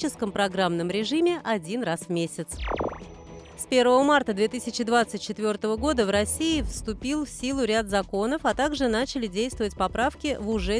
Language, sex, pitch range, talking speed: Russian, female, 195-255 Hz, 140 wpm